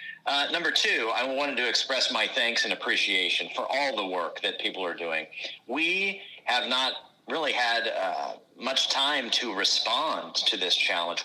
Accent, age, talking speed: American, 40-59, 170 wpm